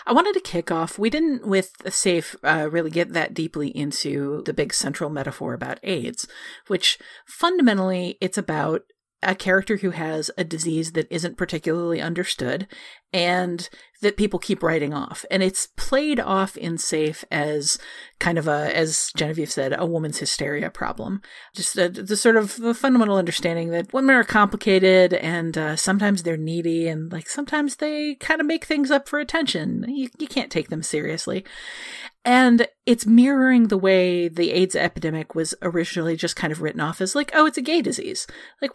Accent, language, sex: American, English, female